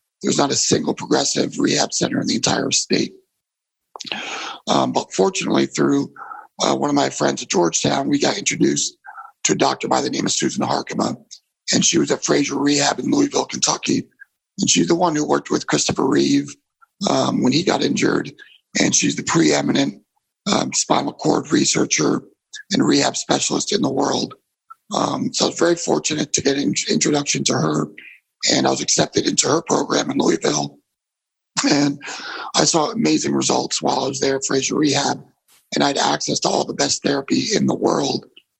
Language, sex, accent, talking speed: English, male, American, 180 wpm